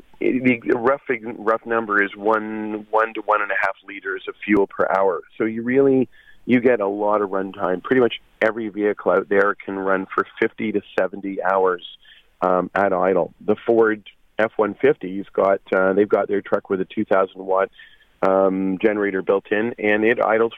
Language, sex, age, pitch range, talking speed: English, male, 40-59, 100-115 Hz, 190 wpm